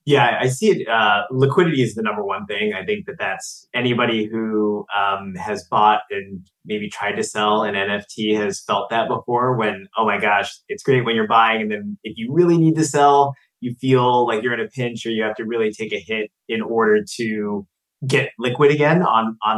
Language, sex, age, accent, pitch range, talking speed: English, male, 20-39, American, 105-130 Hz, 220 wpm